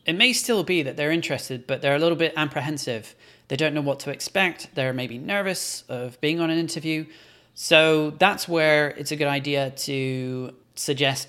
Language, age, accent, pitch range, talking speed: English, 30-49, British, 125-155 Hz, 190 wpm